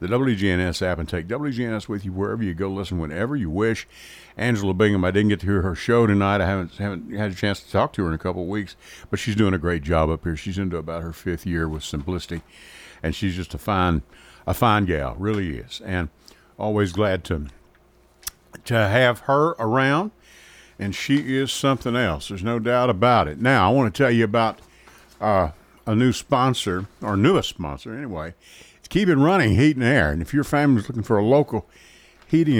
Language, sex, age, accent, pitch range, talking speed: English, male, 60-79, American, 90-125 Hz, 210 wpm